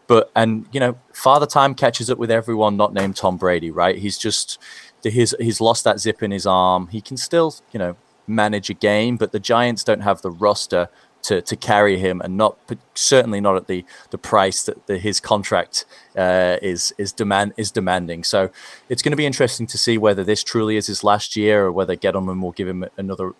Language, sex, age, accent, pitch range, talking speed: English, male, 20-39, British, 95-115 Hz, 215 wpm